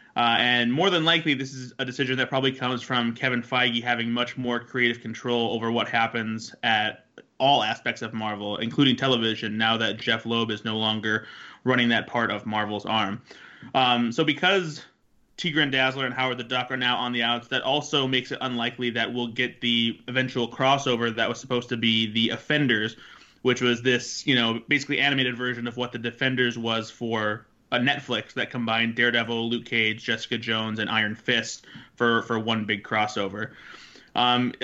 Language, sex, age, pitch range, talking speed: English, male, 20-39, 115-130 Hz, 185 wpm